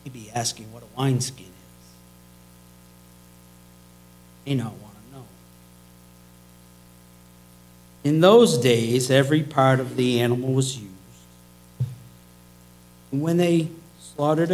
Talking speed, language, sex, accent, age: 105 wpm, English, male, American, 50-69